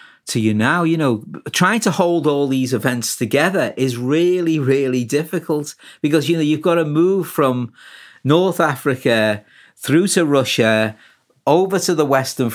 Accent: British